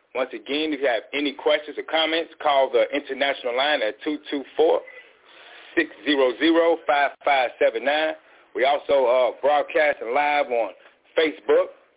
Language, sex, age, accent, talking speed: English, male, 40-59, American, 110 wpm